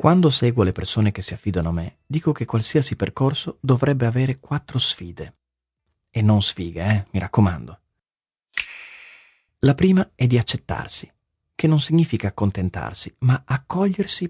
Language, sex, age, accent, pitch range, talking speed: Italian, male, 30-49, native, 95-140 Hz, 145 wpm